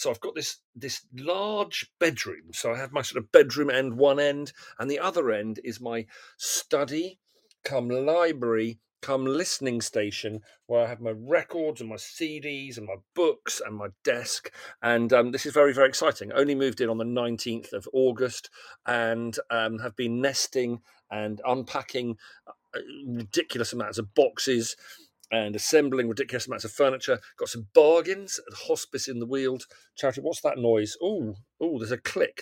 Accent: British